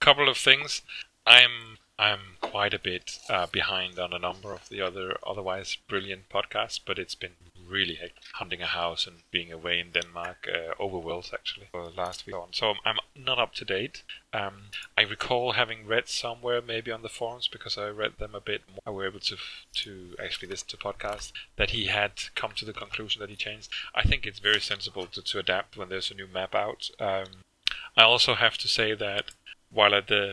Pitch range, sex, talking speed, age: 95-105 Hz, male, 210 wpm, 30-49